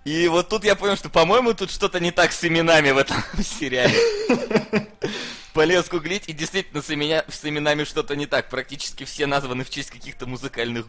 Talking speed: 175 wpm